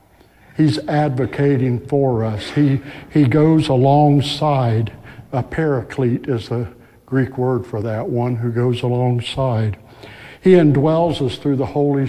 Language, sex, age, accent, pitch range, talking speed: English, male, 60-79, American, 115-140 Hz, 130 wpm